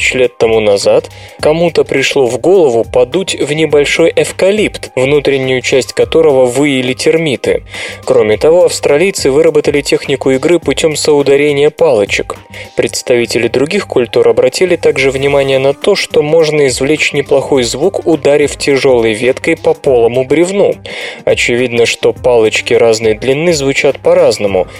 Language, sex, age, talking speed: Russian, male, 20-39, 125 wpm